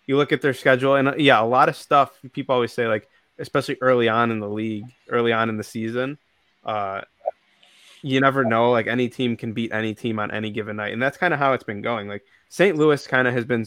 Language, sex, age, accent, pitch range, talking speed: English, male, 20-39, American, 110-135 Hz, 250 wpm